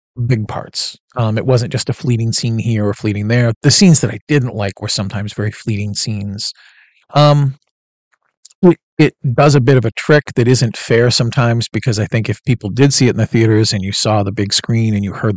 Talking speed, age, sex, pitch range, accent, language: 225 wpm, 40-59, male, 105-130 Hz, American, English